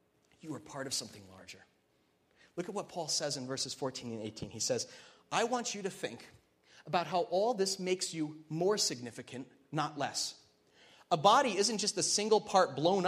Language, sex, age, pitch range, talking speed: English, male, 30-49, 155-220 Hz, 185 wpm